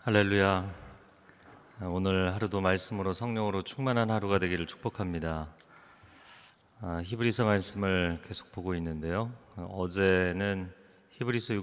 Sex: male